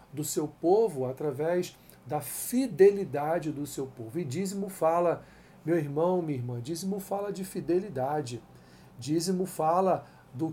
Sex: male